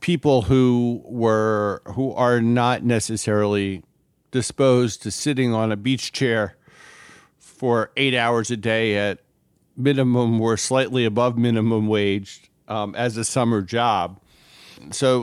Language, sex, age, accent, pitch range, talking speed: English, male, 50-69, American, 100-125 Hz, 125 wpm